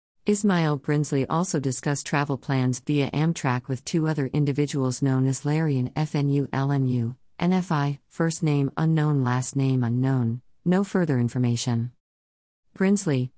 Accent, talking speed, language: American, 130 wpm, English